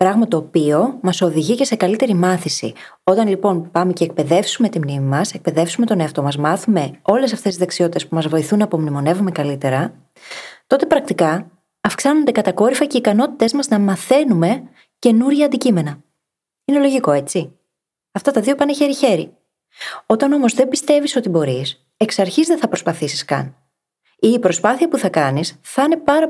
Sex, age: female, 20-39